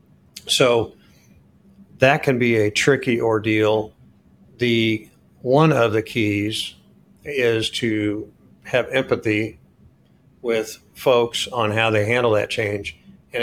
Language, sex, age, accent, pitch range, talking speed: English, male, 50-69, American, 110-125 Hz, 110 wpm